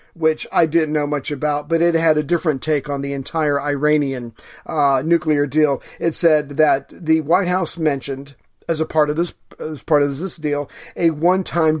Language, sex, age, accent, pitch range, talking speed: English, male, 40-59, American, 145-165 Hz, 200 wpm